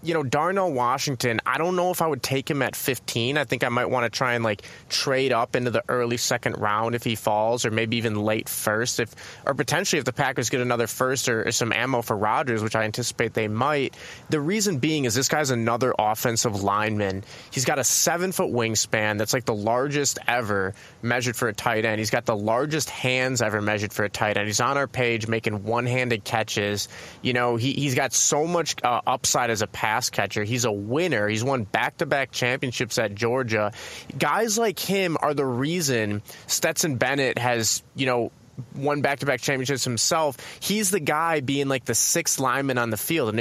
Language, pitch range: English, 115-145 Hz